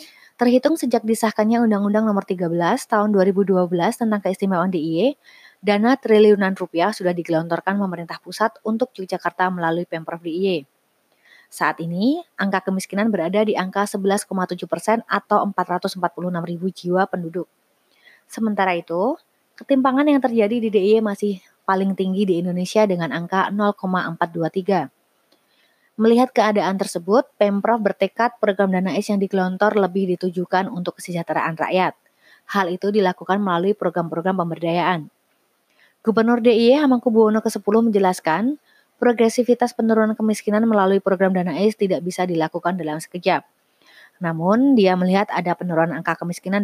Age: 20-39